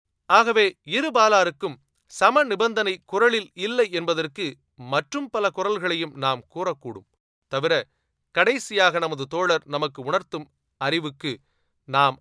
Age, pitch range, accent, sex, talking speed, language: 30-49, 135-185 Hz, native, male, 95 wpm, Tamil